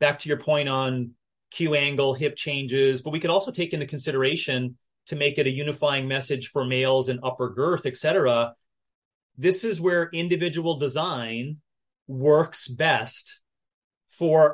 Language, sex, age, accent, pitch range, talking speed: English, male, 30-49, American, 140-175 Hz, 155 wpm